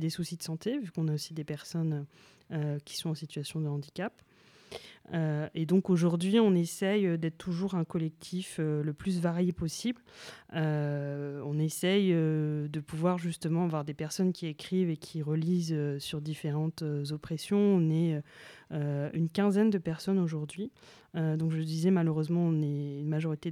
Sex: female